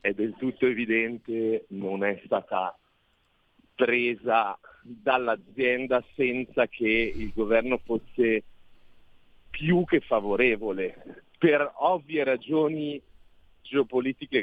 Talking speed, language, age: 85 wpm, Italian, 40-59